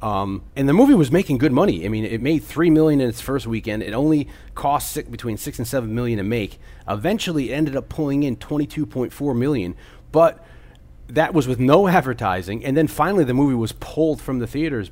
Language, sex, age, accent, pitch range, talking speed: English, male, 30-49, American, 95-140 Hz, 215 wpm